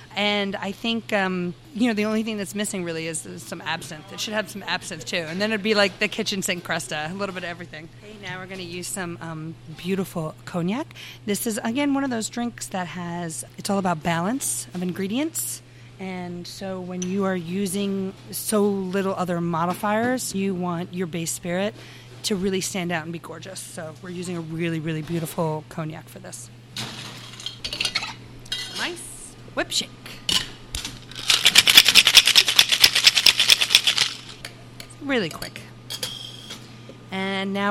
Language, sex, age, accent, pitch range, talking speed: English, female, 30-49, American, 160-205 Hz, 160 wpm